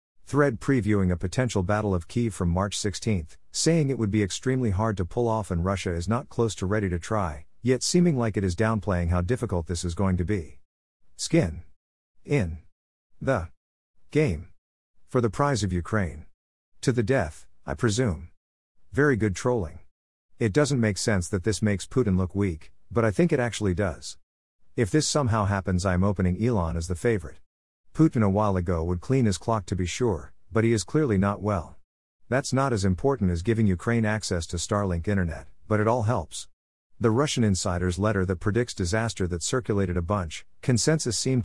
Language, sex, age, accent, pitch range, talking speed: English, male, 50-69, American, 90-115 Hz, 190 wpm